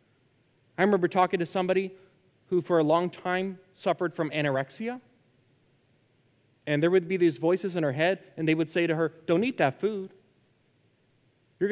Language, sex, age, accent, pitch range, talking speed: English, male, 30-49, American, 130-175 Hz, 170 wpm